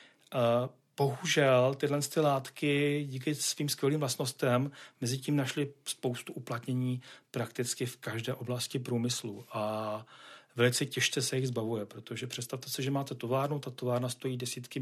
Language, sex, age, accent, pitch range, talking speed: Czech, male, 40-59, native, 120-135 Hz, 145 wpm